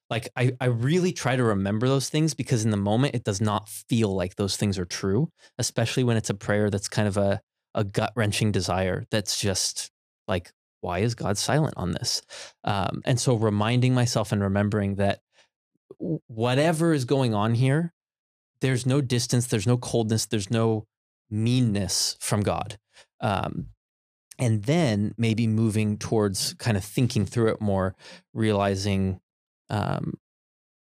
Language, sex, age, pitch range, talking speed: English, male, 20-39, 100-125 Hz, 160 wpm